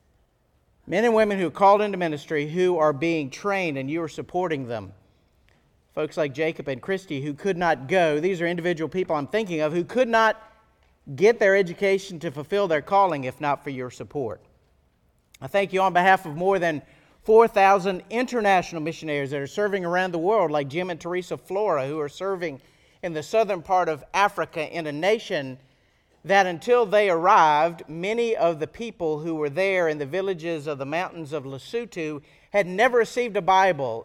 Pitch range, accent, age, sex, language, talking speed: 145-195 Hz, American, 50-69, male, English, 185 wpm